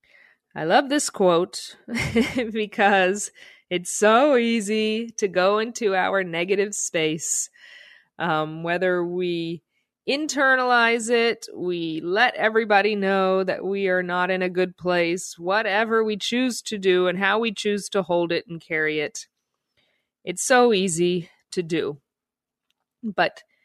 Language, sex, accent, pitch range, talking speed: English, female, American, 175-250 Hz, 130 wpm